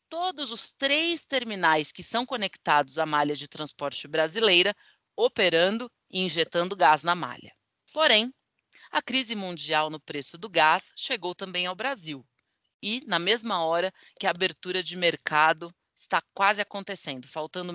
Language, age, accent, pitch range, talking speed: English, 30-49, Brazilian, 165-255 Hz, 145 wpm